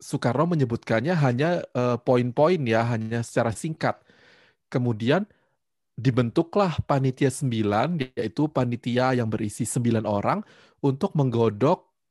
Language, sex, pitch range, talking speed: Indonesian, male, 115-140 Hz, 105 wpm